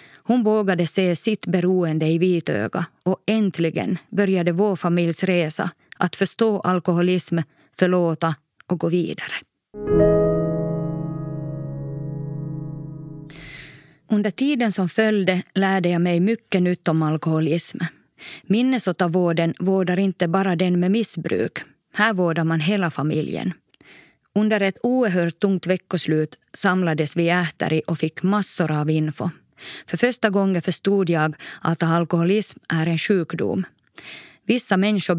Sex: female